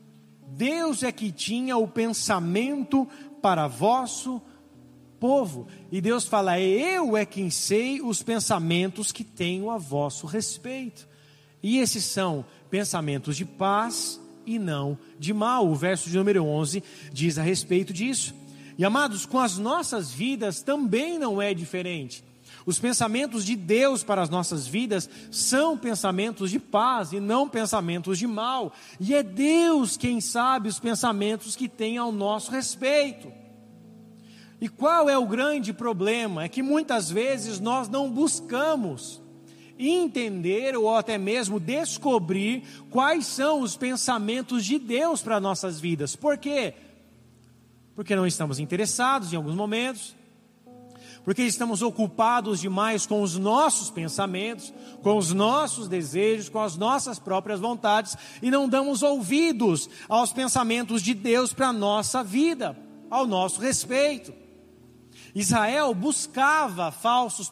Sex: male